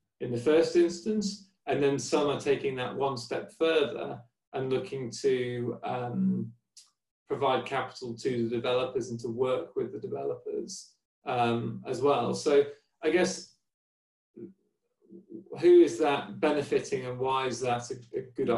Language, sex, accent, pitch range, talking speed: English, male, British, 120-190 Hz, 140 wpm